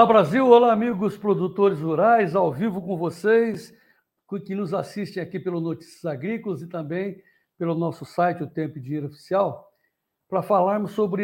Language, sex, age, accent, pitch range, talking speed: Portuguese, male, 60-79, Brazilian, 160-200 Hz, 155 wpm